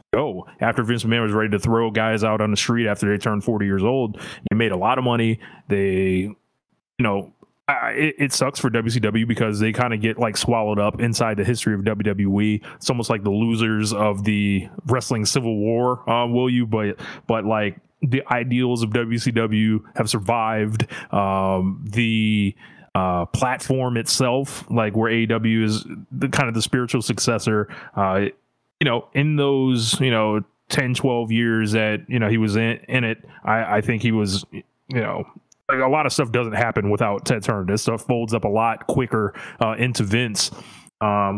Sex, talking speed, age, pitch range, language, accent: male, 190 wpm, 20-39, 105-120 Hz, English, American